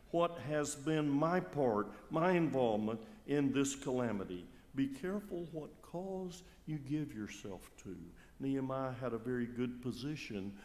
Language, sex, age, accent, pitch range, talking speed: English, male, 60-79, American, 115-180 Hz, 135 wpm